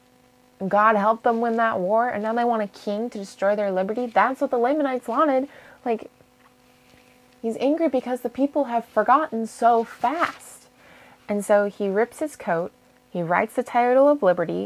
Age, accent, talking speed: 20-39, American, 175 wpm